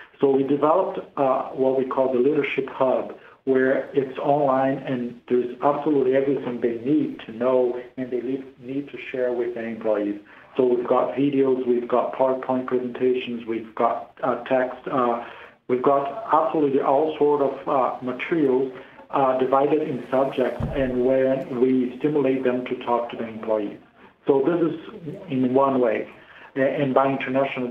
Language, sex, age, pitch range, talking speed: English, male, 60-79, 125-140 Hz, 160 wpm